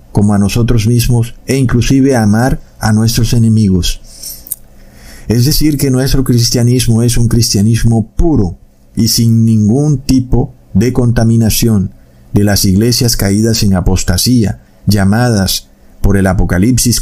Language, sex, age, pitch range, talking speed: Spanish, male, 50-69, 100-125 Hz, 125 wpm